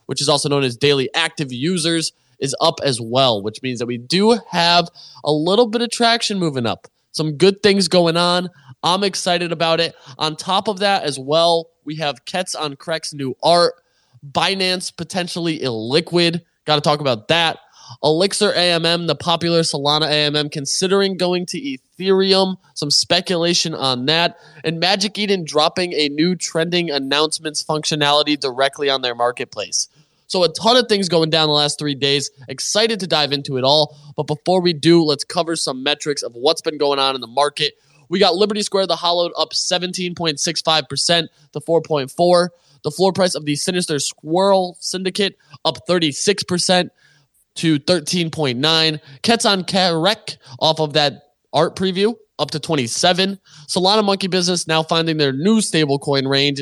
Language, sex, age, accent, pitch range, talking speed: English, male, 20-39, American, 145-180 Hz, 165 wpm